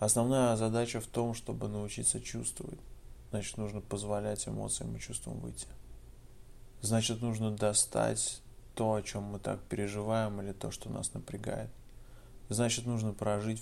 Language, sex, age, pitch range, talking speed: Russian, male, 20-39, 100-120 Hz, 135 wpm